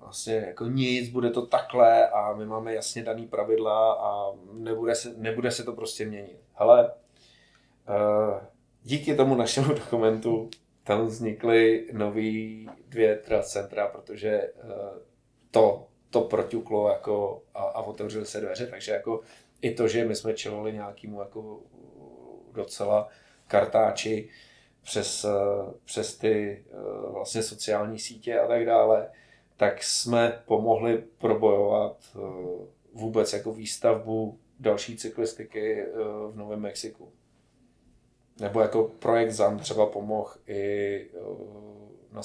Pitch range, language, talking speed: 105-115 Hz, Czech, 115 wpm